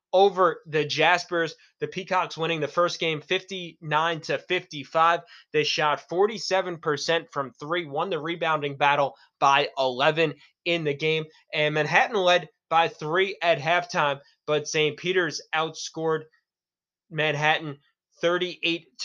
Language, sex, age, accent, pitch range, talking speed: English, male, 20-39, American, 145-165 Hz, 125 wpm